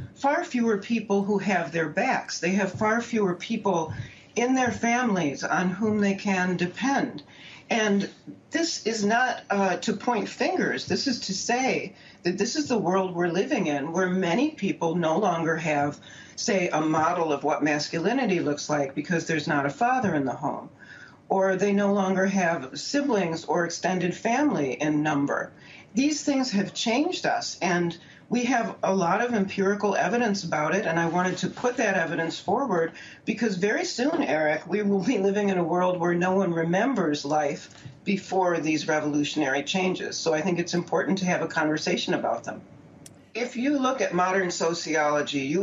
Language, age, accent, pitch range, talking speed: English, 40-59, American, 160-205 Hz, 175 wpm